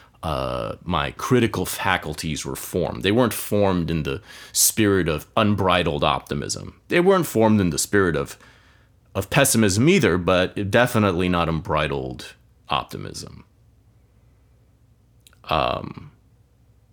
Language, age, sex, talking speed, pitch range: English, 30-49, male, 110 wpm, 85-110 Hz